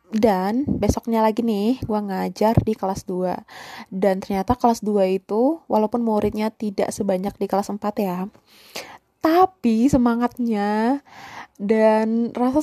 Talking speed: 125 wpm